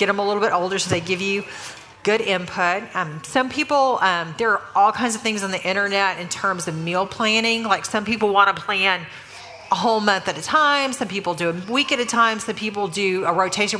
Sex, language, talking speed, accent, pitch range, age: female, English, 240 wpm, American, 180-215 Hz, 40-59